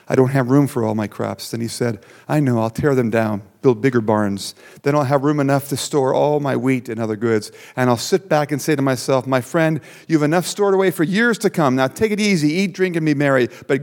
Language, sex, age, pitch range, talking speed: English, male, 50-69, 110-140 Hz, 270 wpm